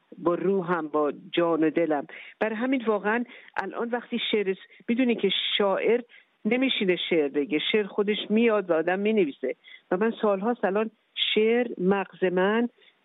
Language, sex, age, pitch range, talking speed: Persian, female, 50-69, 180-220 Hz, 145 wpm